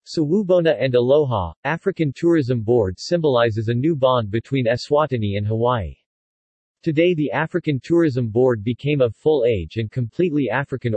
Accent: American